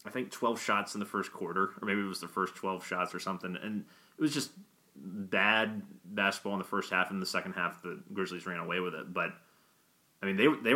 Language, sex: English, male